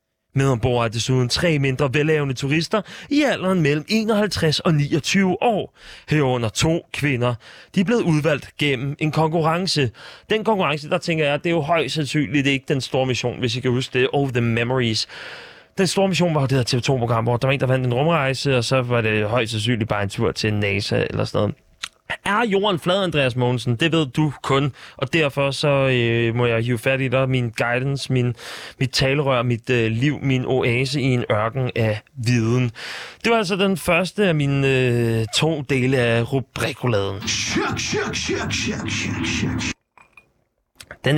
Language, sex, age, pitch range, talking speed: Danish, male, 30-49, 120-165 Hz, 175 wpm